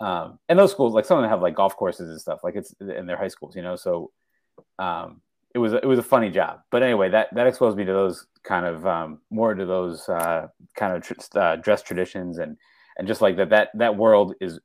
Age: 30-49